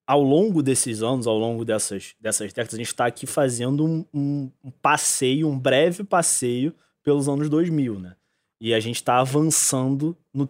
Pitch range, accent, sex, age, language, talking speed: 125-155 Hz, Brazilian, male, 20-39, Portuguese, 175 wpm